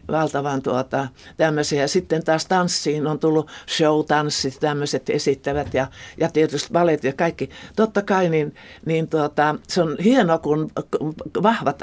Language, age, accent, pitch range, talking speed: Finnish, 60-79, native, 140-165 Hz, 140 wpm